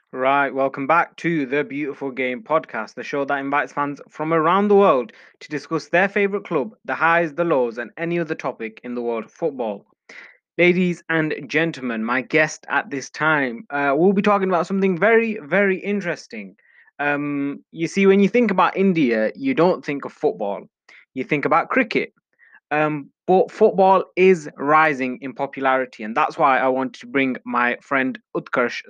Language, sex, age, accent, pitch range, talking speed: English, male, 20-39, British, 130-170 Hz, 180 wpm